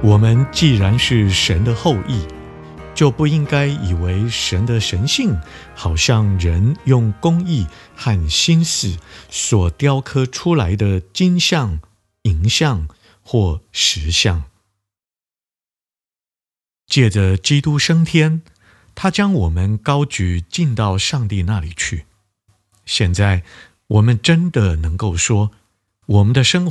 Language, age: Chinese, 50-69